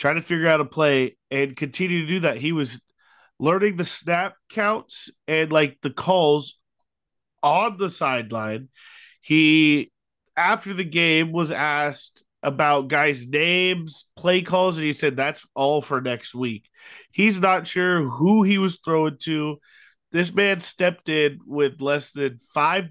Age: 30-49